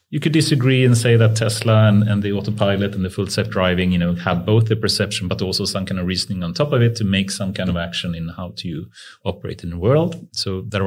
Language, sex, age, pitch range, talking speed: English, male, 30-49, 95-115 Hz, 255 wpm